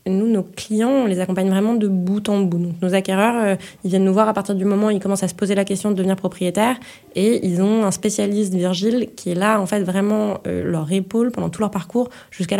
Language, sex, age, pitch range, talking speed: French, female, 20-39, 185-225 Hz, 255 wpm